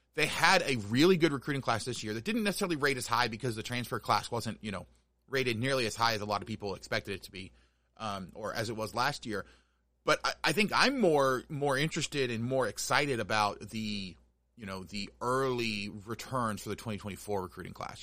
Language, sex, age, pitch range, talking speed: English, male, 30-49, 105-135 Hz, 215 wpm